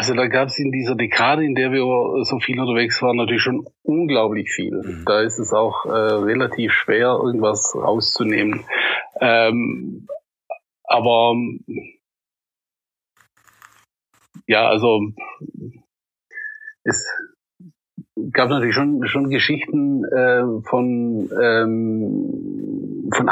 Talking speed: 105 wpm